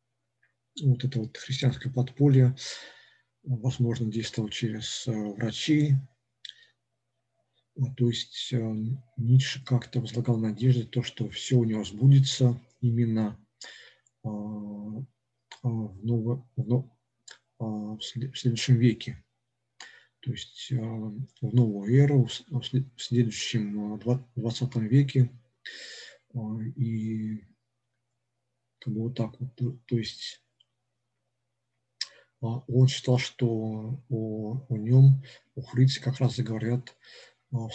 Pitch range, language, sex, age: 115-130 Hz, Russian, male, 50-69